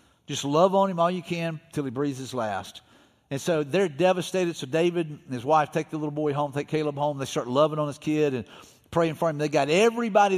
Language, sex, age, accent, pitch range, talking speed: English, male, 50-69, American, 145-175 Hz, 245 wpm